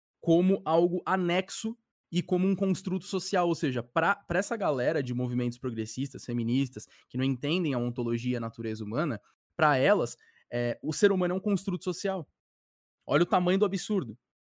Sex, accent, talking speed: male, Brazilian, 170 wpm